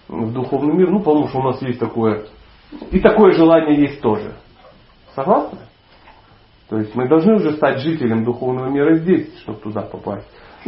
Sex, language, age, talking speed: male, Russian, 40-59, 165 wpm